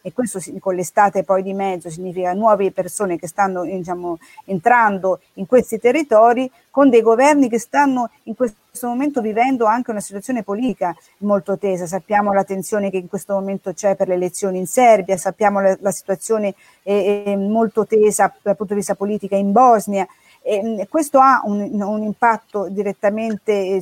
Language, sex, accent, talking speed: Italian, female, native, 165 wpm